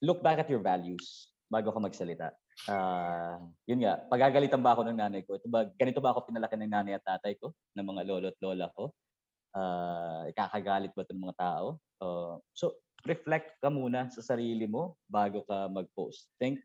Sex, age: male, 20-39